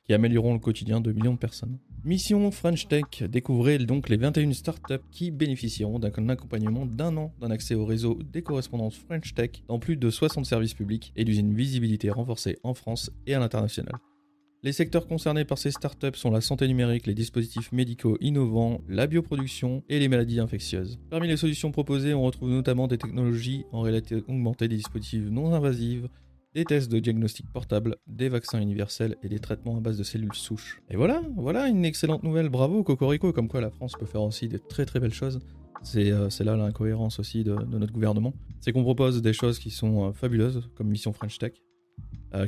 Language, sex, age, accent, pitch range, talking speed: French, male, 30-49, French, 110-135 Hz, 200 wpm